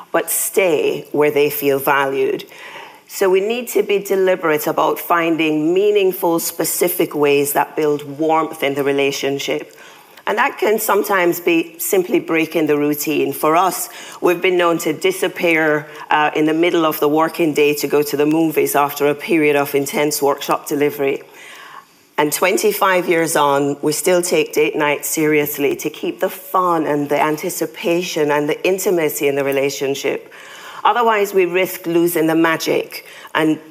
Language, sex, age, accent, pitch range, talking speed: English, female, 40-59, British, 145-195 Hz, 160 wpm